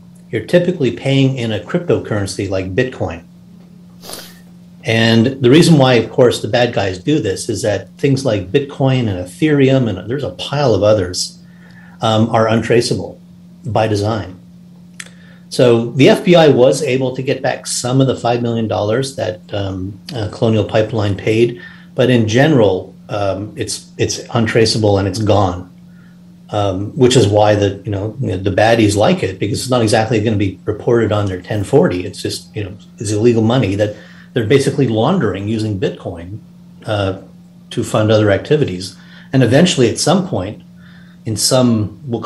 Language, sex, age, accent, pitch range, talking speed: English, male, 40-59, American, 105-150 Hz, 160 wpm